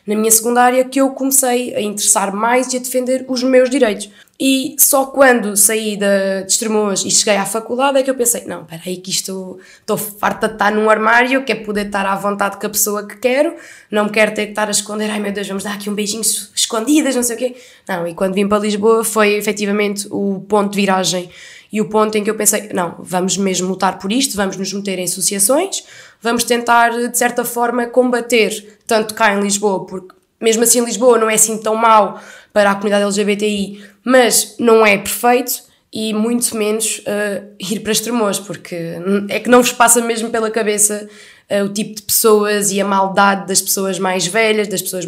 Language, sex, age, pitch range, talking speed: Portuguese, female, 20-39, 200-240 Hz, 210 wpm